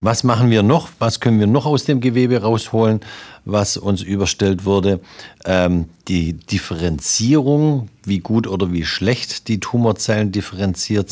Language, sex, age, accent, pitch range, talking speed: German, male, 50-69, German, 85-105 Hz, 145 wpm